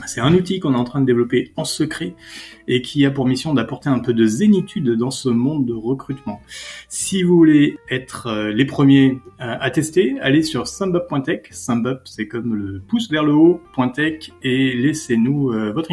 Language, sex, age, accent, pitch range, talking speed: French, male, 30-49, French, 125-160 Hz, 185 wpm